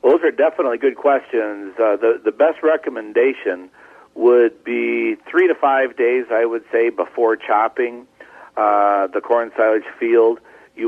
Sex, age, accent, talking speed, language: male, 50-69, American, 150 wpm, English